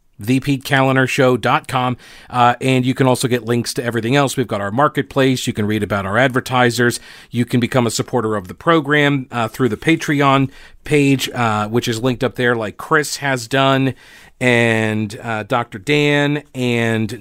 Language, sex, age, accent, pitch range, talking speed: English, male, 40-59, American, 115-135 Hz, 165 wpm